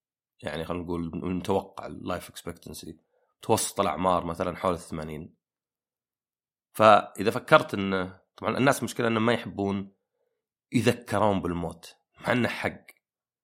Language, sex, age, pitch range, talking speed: Arabic, male, 30-49, 95-115 Hz, 115 wpm